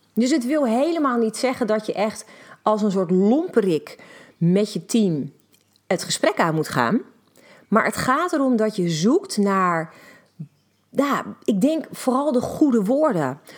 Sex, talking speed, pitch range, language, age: female, 160 wpm, 180-250 Hz, Dutch, 40-59